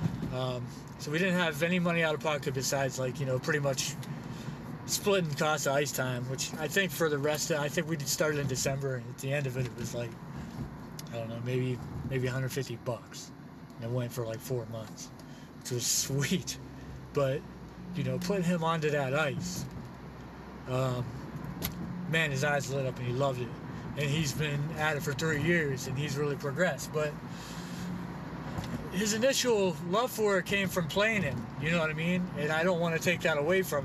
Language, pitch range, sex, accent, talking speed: English, 135-170 Hz, male, American, 205 wpm